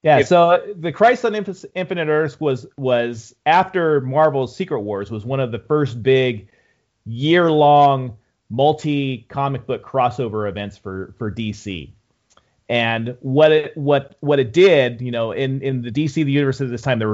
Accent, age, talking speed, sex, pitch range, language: American, 30-49, 170 wpm, male, 110-145 Hz, English